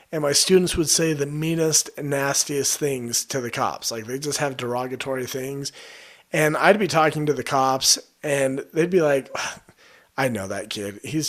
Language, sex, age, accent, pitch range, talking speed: English, male, 40-59, American, 135-180 Hz, 180 wpm